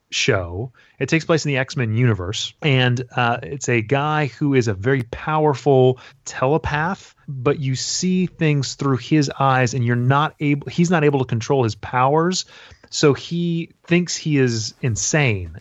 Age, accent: 30-49, American